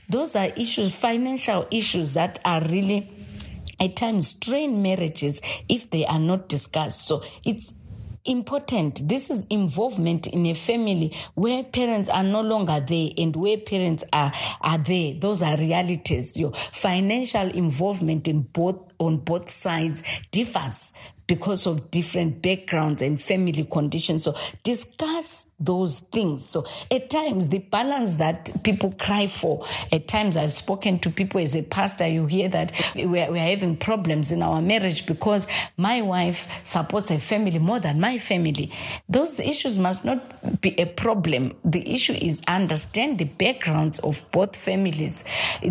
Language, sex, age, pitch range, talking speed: English, female, 40-59, 160-210 Hz, 150 wpm